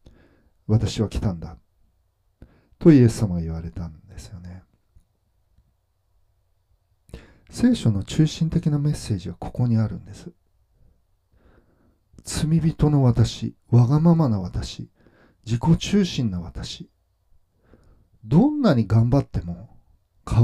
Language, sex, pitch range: Japanese, male, 90-125 Hz